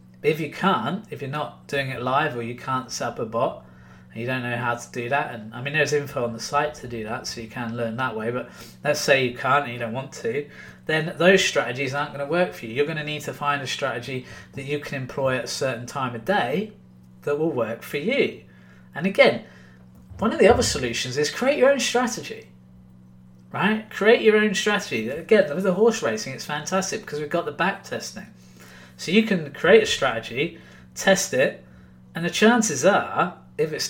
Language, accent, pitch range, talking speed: English, British, 110-180 Hz, 225 wpm